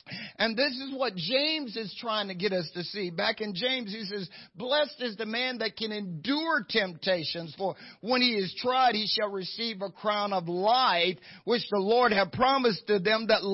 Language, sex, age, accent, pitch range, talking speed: English, male, 50-69, American, 175-225 Hz, 200 wpm